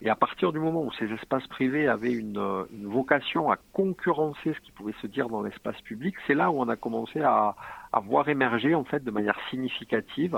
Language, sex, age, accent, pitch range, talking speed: French, male, 50-69, French, 105-145 Hz, 220 wpm